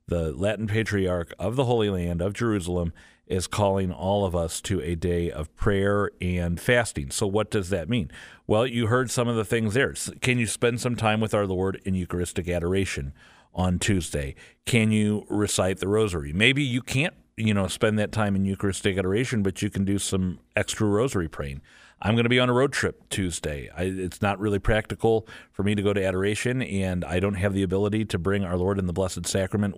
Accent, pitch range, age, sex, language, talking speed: American, 90-110 Hz, 50-69, male, English, 210 wpm